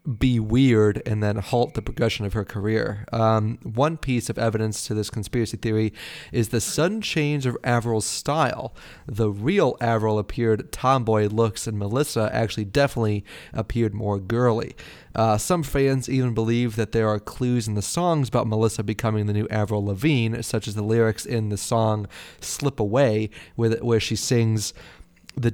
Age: 30-49